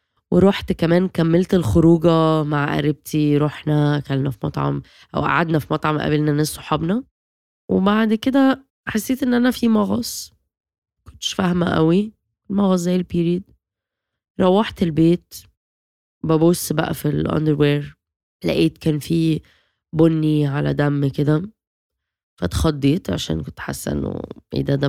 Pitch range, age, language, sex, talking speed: 140-180 Hz, 20-39, Arabic, female, 125 wpm